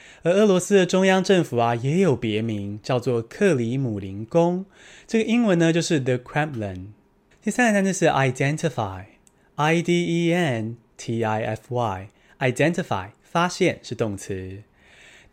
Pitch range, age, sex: 120-175 Hz, 20-39, male